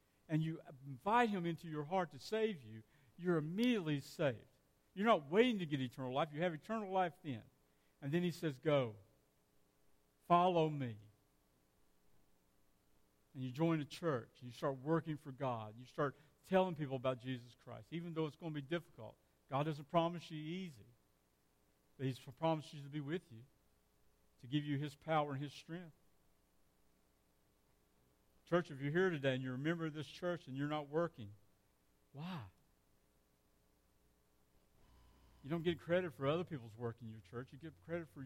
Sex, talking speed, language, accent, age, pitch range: male, 175 wpm, English, American, 50-69, 110-165 Hz